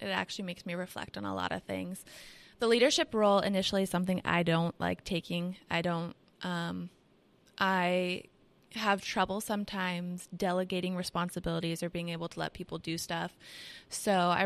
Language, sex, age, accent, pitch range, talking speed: English, female, 20-39, American, 175-195 Hz, 160 wpm